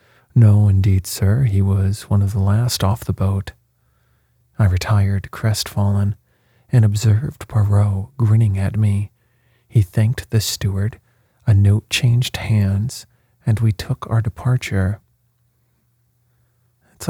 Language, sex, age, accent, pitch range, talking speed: English, male, 40-59, American, 105-120 Hz, 125 wpm